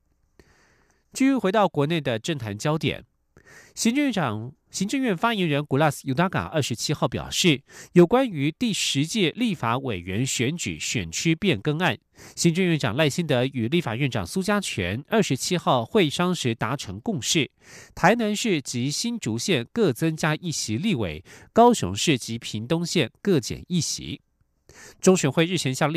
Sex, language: male, German